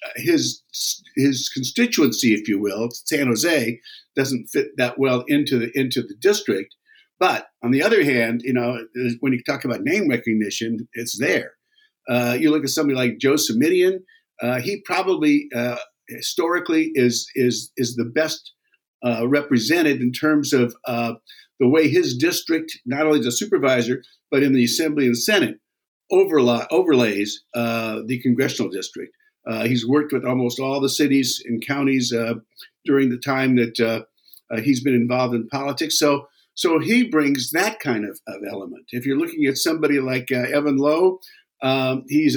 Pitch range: 125-160 Hz